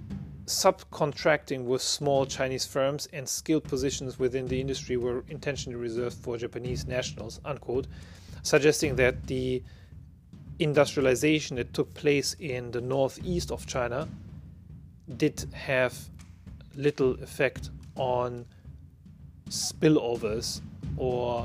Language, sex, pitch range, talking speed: English, male, 85-135 Hz, 105 wpm